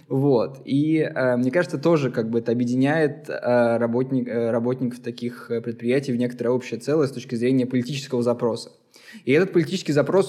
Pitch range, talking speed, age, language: 120-140 Hz, 175 wpm, 20-39, Russian